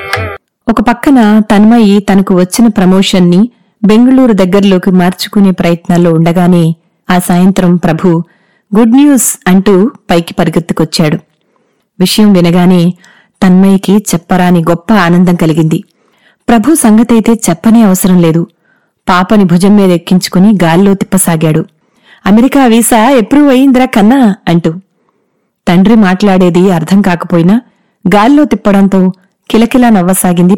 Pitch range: 180-220 Hz